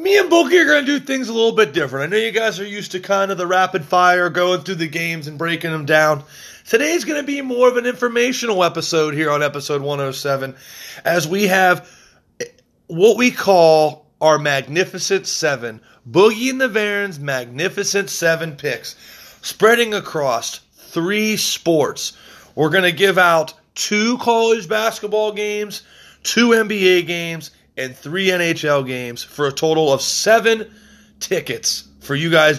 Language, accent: English, American